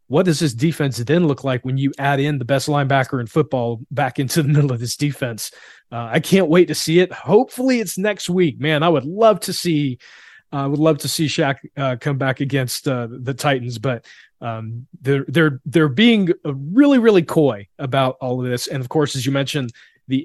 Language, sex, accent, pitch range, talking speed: English, male, American, 130-160 Hz, 220 wpm